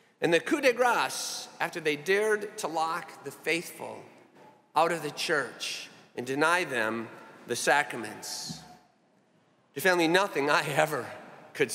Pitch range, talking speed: 130-175 Hz, 140 wpm